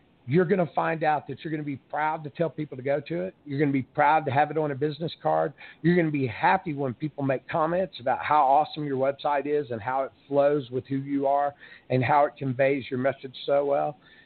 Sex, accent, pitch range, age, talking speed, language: male, American, 135-160 Hz, 50-69, 255 wpm, English